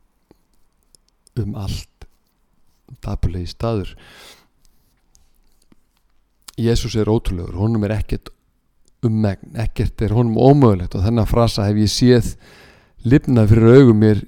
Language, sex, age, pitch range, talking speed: English, male, 50-69, 95-115 Hz, 95 wpm